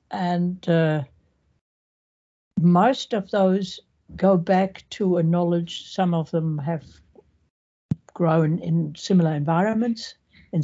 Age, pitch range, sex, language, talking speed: 60-79, 175-225 Hz, female, English, 105 wpm